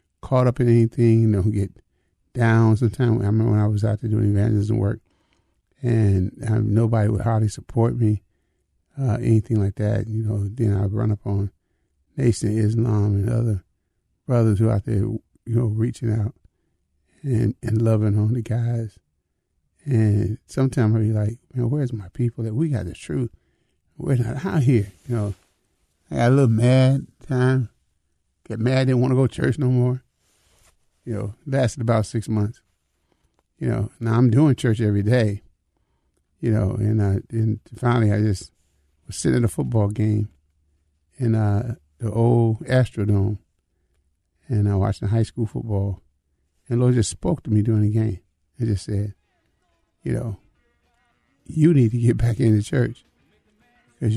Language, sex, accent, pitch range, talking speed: English, male, American, 100-120 Hz, 175 wpm